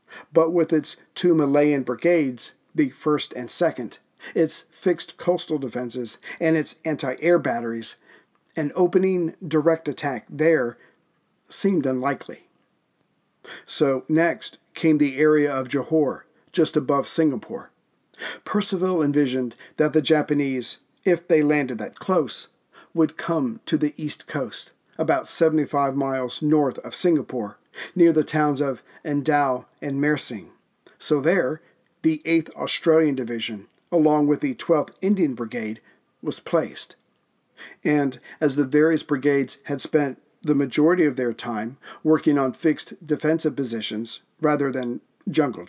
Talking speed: 130 wpm